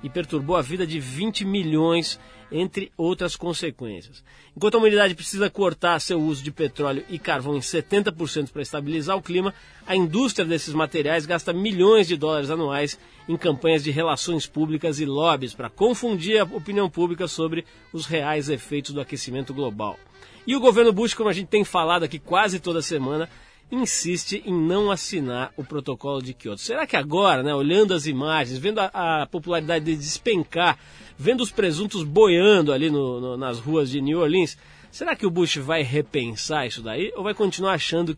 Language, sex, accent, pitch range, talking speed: Portuguese, male, Brazilian, 150-195 Hz, 175 wpm